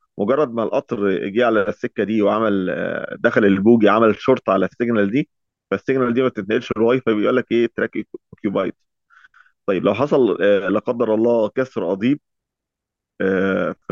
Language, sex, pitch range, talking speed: Arabic, male, 100-120 Hz, 145 wpm